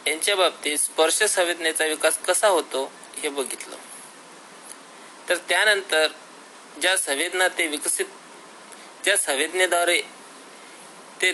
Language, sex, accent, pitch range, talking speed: Marathi, male, native, 155-185 Hz, 95 wpm